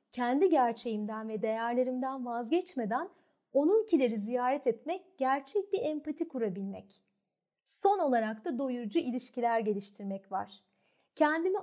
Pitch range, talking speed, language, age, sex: 220-315 Hz, 105 wpm, Turkish, 30-49, female